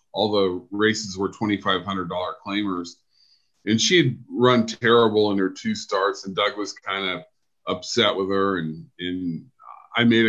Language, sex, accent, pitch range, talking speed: English, male, American, 100-125 Hz, 155 wpm